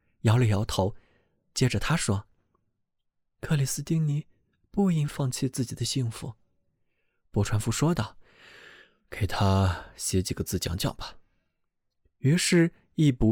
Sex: male